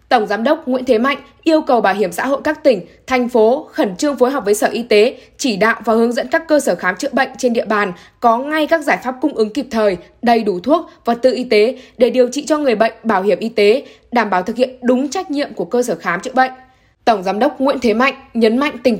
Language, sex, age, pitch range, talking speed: Vietnamese, female, 10-29, 220-275 Hz, 275 wpm